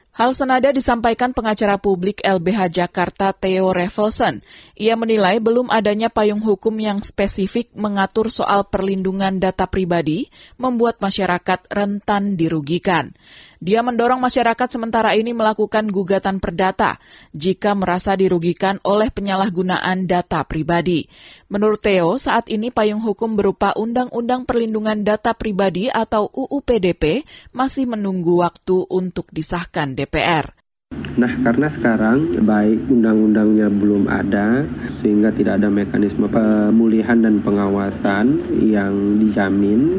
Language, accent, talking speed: Indonesian, native, 115 wpm